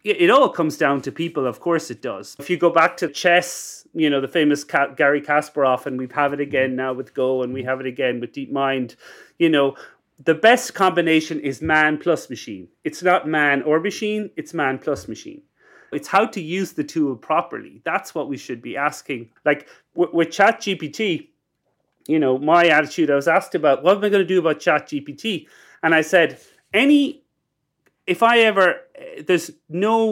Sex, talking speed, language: male, 195 wpm, English